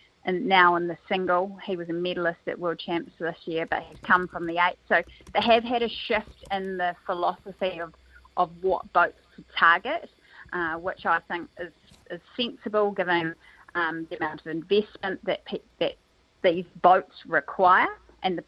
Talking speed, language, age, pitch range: 180 wpm, English, 30-49, 170-200 Hz